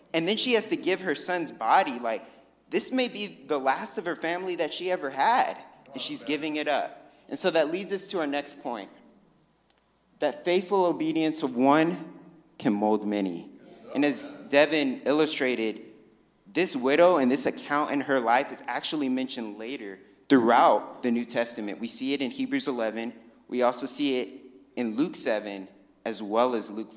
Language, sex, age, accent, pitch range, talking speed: English, male, 30-49, American, 110-160 Hz, 180 wpm